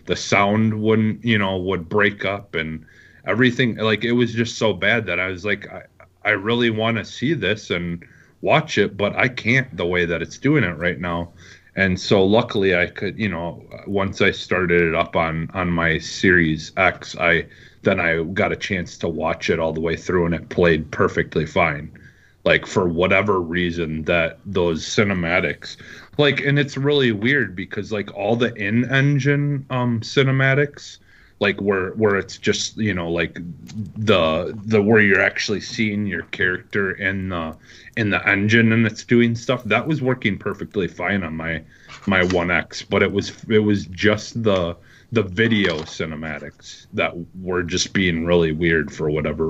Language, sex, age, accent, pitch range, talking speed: English, male, 30-49, American, 85-115 Hz, 180 wpm